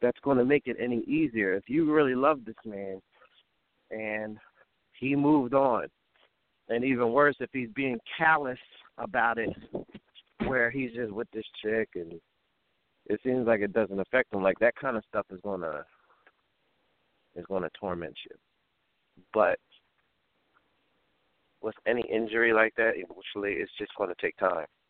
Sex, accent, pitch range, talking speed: male, American, 110-150 Hz, 150 wpm